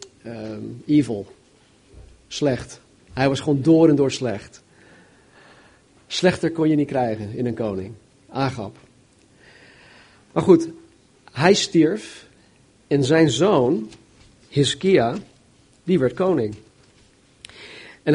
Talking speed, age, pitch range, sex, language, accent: 105 wpm, 50-69, 125-155 Hz, male, Dutch, Dutch